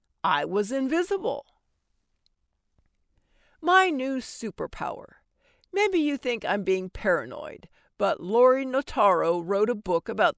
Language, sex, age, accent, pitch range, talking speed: English, female, 60-79, American, 195-285 Hz, 110 wpm